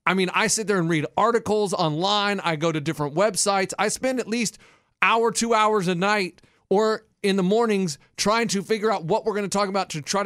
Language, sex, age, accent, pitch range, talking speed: English, male, 30-49, American, 165-215 Hz, 230 wpm